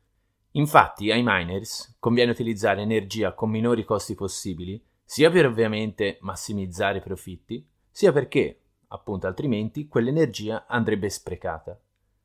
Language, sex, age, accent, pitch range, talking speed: Italian, male, 30-49, native, 100-145 Hz, 115 wpm